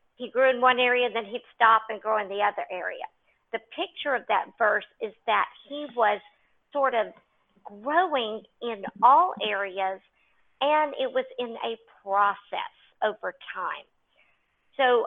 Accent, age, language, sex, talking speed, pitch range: American, 50-69, English, female, 150 wpm, 215-270 Hz